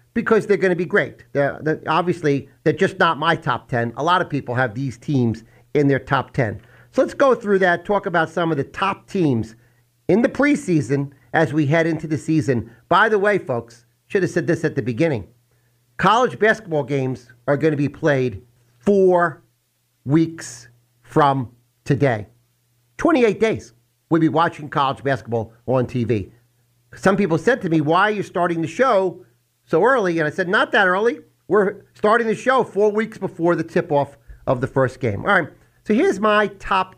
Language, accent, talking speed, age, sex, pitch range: English, American, 185 wpm, 50-69, male, 120-180 Hz